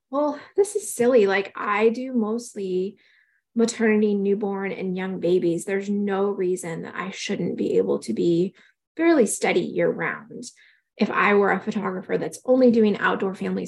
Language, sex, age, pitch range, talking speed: English, female, 20-39, 185-235 Hz, 160 wpm